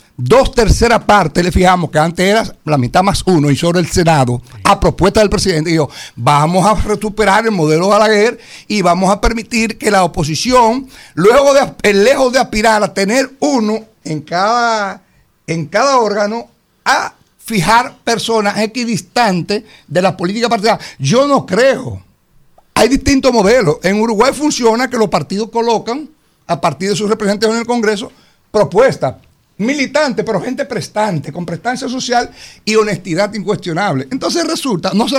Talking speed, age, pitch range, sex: 155 wpm, 60-79, 180-235 Hz, male